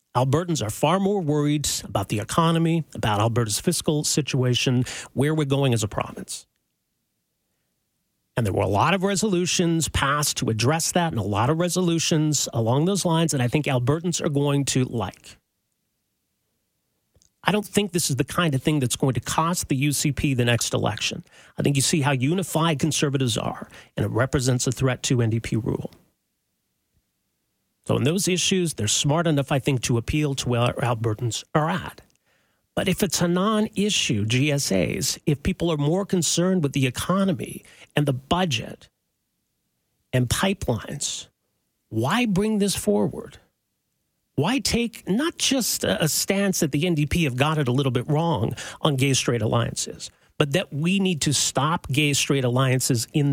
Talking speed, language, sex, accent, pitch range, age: 165 wpm, English, male, American, 125-175 Hz, 40-59